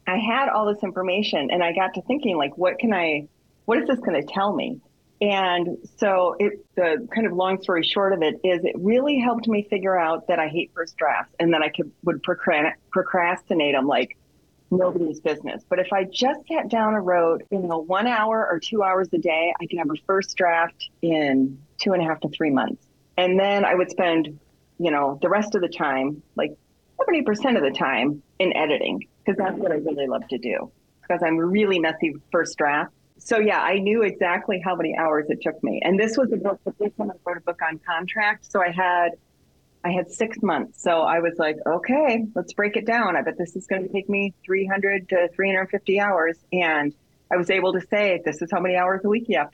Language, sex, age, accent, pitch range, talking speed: English, female, 30-49, American, 165-205 Hz, 230 wpm